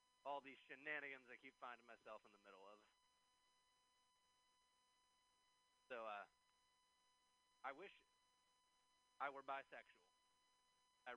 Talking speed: 100 wpm